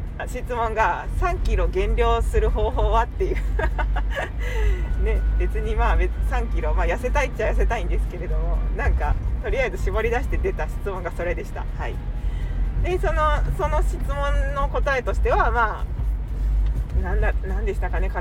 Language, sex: Japanese, female